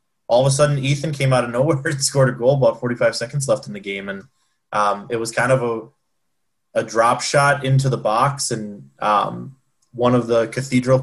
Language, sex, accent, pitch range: English, male, American, 110-130 Hz